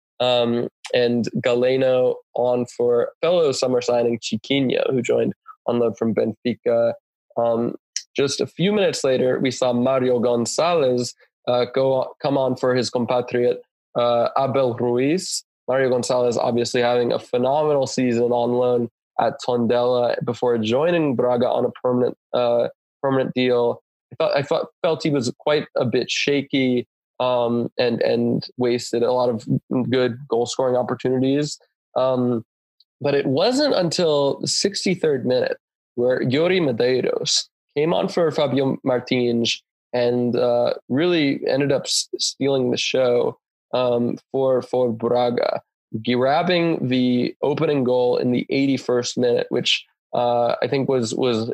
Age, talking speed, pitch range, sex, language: 20-39, 140 wpm, 120-140 Hz, male, English